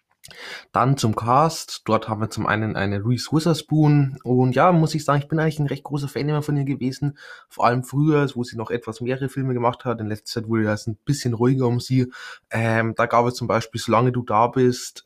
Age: 20-39